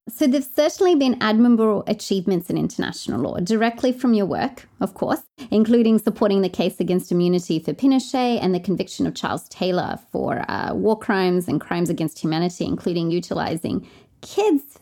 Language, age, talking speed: English, 30-49, 160 wpm